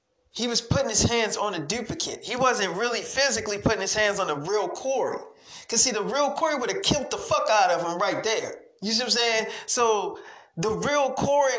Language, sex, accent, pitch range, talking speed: English, male, American, 200-245 Hz, 225 wpm